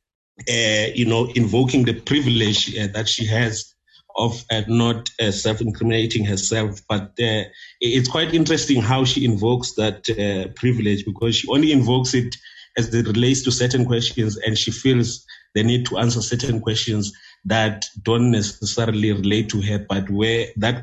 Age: 30-49